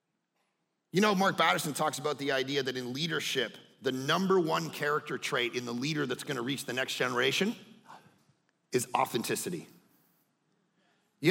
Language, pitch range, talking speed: English, 195-270 Hz, 150 wpm